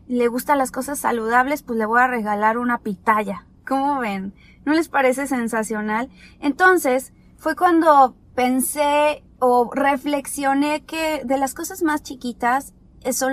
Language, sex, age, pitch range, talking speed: Spanish, female, 20-39, 230-285 Hz, 140 wpm